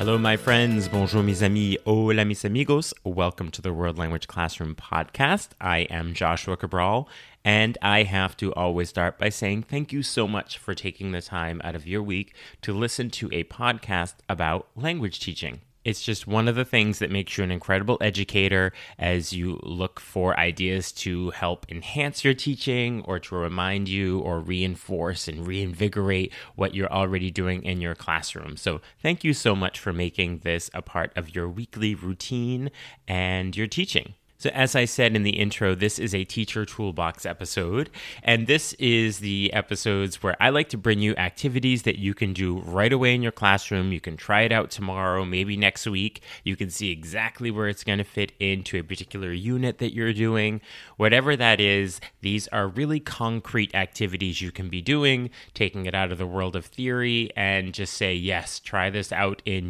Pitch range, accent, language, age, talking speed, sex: 90-115 Hz, American, English, 30-49, 190 wpm, male